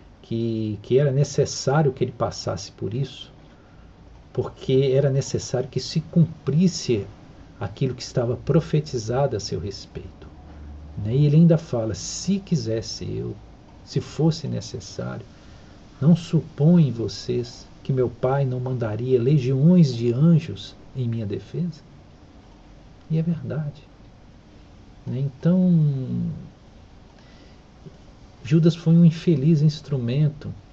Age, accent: 50-69, Brazilian